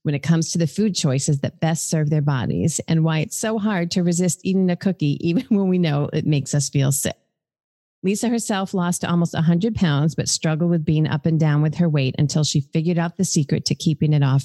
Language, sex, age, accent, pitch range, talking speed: English, female, 40-59, American, 150-175 Hz, 235 wpm